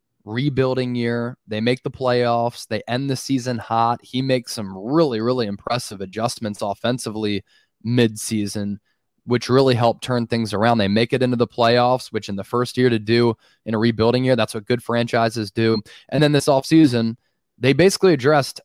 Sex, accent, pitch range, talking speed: male, American, 115-130 Hz, 175 wpm